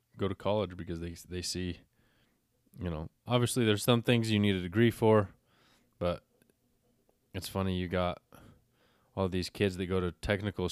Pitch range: 85-95 Hz